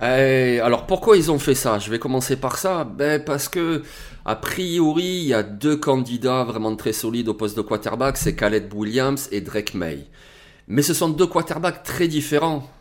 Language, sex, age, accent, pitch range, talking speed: French, male, 30-49, French, 125-155 Hz, 195 wpm